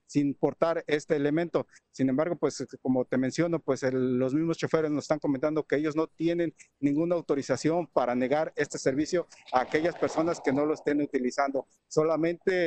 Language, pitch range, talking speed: Spanish, 140-170 Hz, 170 wpm